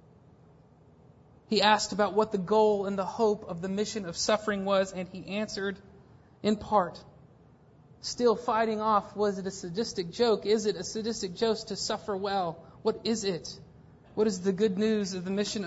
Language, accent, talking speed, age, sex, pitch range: English, American, 180 wpm, 40-59, male, 145-210 Hz